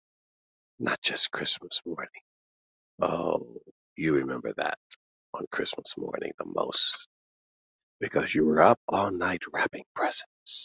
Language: English